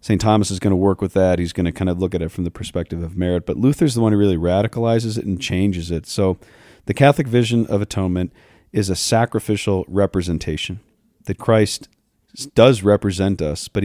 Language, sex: English, male